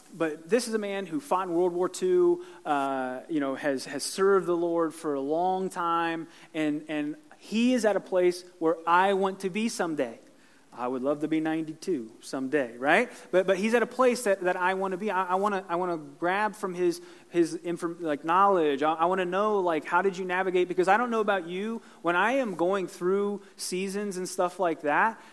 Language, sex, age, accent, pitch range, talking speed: English, male, 30-49, American, 170-205 Hz, 225 wpm